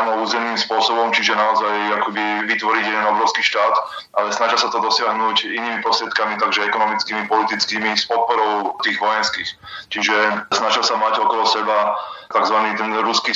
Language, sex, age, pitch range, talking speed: Slovak, male, 20-39, 105-110 Hz, 135 wpm